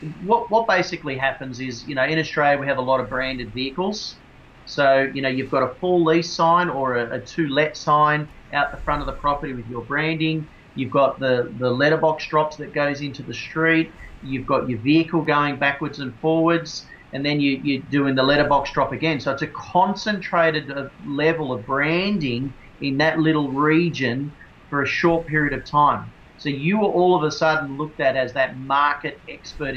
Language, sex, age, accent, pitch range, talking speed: English, male, 30-49, Australian, 130-155 Hz, 195 wpm